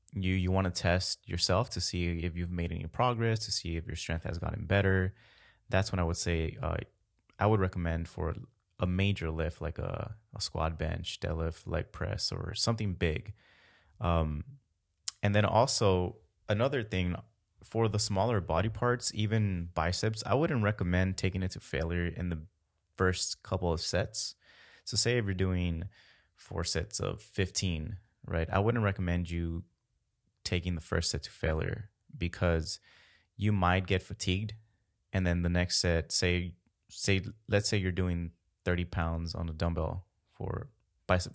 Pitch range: 85-105 Hz